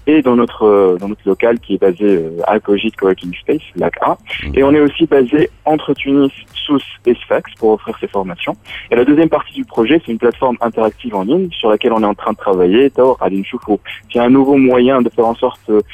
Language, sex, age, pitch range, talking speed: Arabic, male, 20-39, 100-125 Hz, 235 wpm